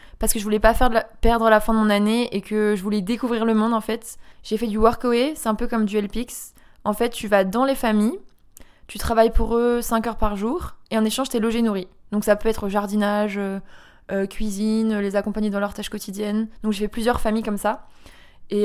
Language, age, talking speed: French, 20-39, 250 wpm